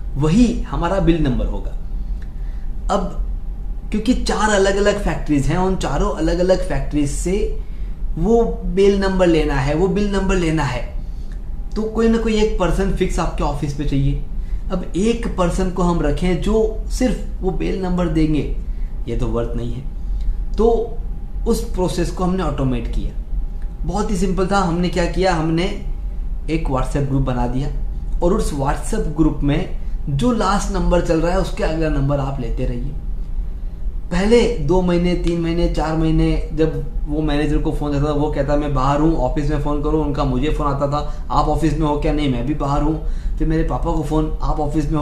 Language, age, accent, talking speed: Hindi, 20-39, native, 190 wpm